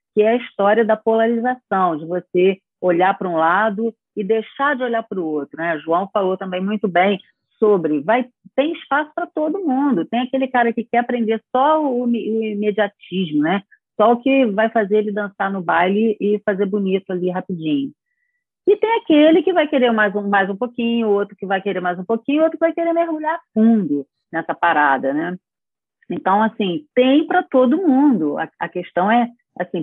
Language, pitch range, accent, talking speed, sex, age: Portuguese, 180-250 Hz, Brazilian, 190 wpm, female, 40-59